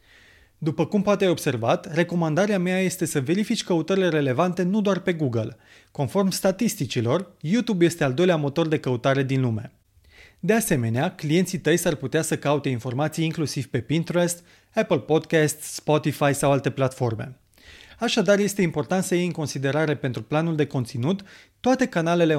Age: 30-49